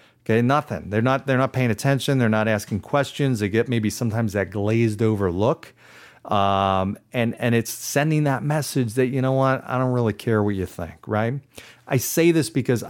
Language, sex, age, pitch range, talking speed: English, male, 40-59, 105-135 Hz, 200 wpm